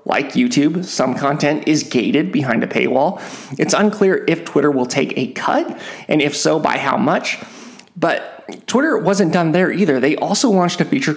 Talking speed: 185 wpm